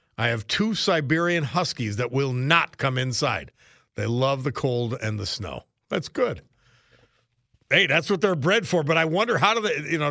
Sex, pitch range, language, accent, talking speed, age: male, 115-155 Hz, English, American, 195 wpm, 50-69